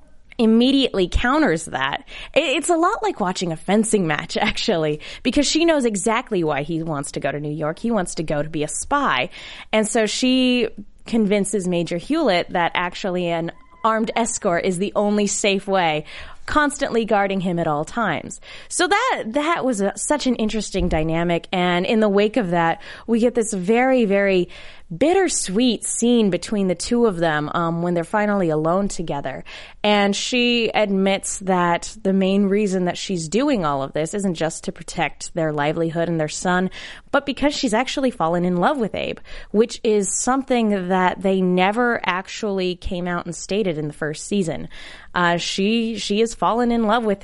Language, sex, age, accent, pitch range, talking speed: English, female, 20-39, American, 175-225 Hz, 180 wpm